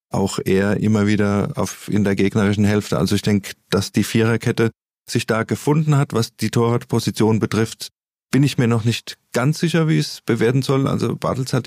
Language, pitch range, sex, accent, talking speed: German, 100-120 Hz, male, German, 190 wpm